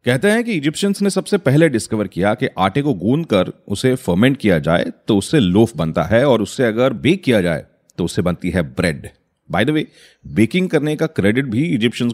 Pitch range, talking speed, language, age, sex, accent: 95-140 Hz, 210 wpm, Hindi, 40-59, male, native